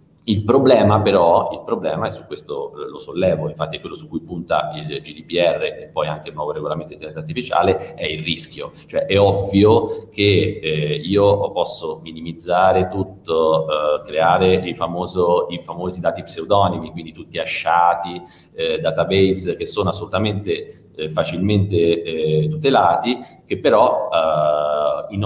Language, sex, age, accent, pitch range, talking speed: Italian, male, 30-49, native, 85-105 Hz, 150 wpm